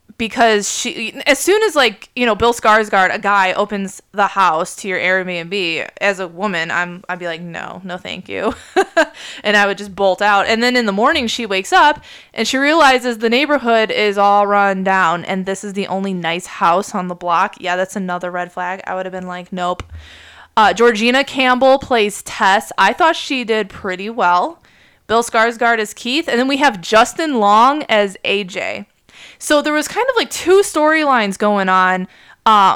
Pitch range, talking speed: 185-235 Hz, 195 wpm